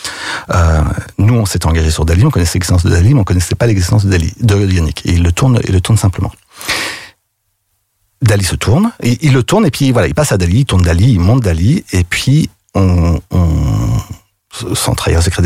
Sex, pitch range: male, 90-120 Hz